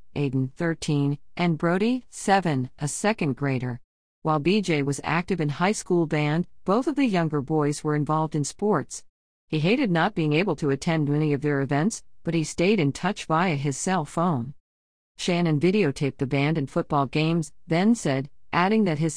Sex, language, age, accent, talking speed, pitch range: female, English, 50-69, American, 180 wpm, 140-180 Hz